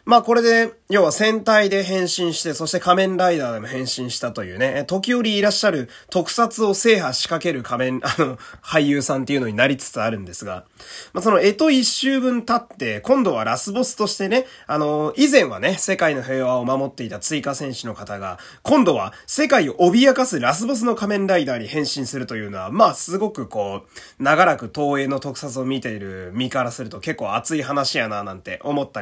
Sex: male